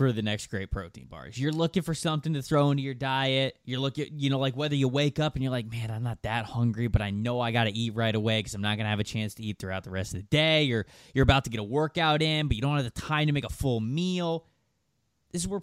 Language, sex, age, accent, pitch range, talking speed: English, male, 20-39, American, 115-165 Hz, 325 wpm